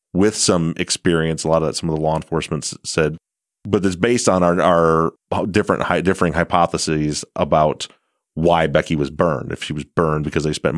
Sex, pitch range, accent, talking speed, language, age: male, 80-95 Hz, American, 195 wpm, English, 30-49